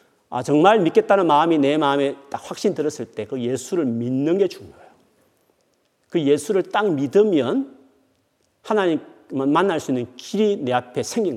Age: 40-59